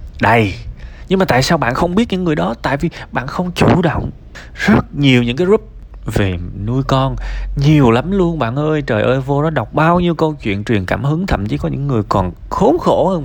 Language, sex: Vietnamese, male